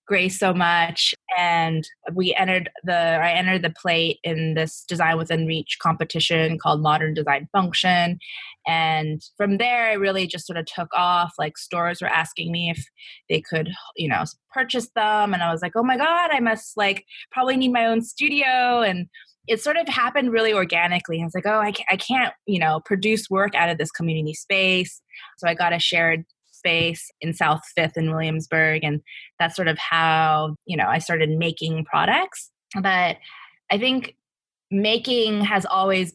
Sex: female